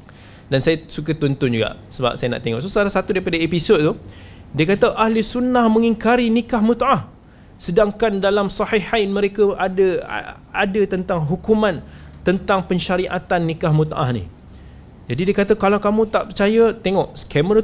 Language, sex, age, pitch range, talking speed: Malay, male, 20-39, 130-210 Hz, 145 wpm